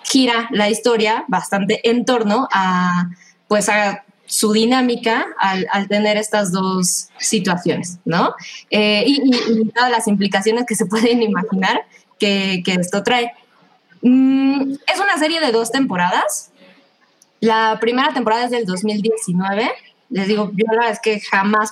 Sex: female